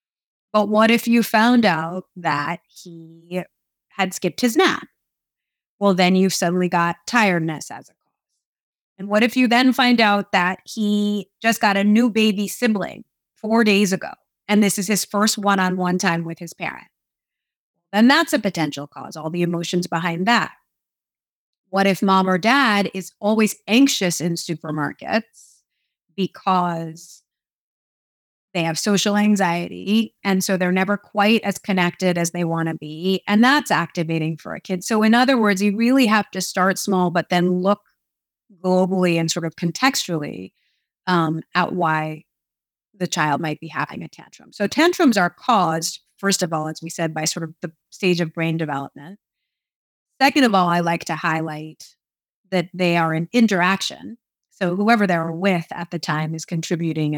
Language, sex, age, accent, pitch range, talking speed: English, female, 30-49, American, 170-210 Hz, 165 wpm